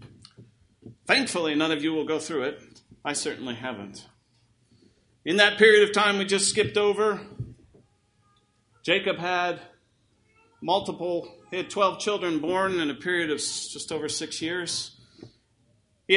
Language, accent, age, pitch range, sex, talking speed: English, American, 40-59, 145-210 Hz, male, 135 wpm